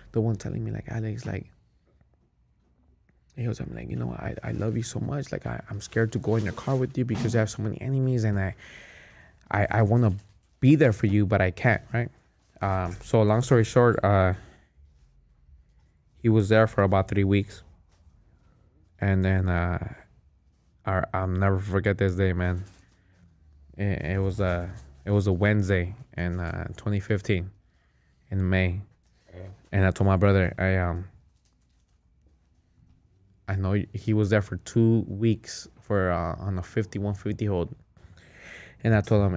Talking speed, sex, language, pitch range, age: 170 wpm, male, English, 90-110 Hz, 20-39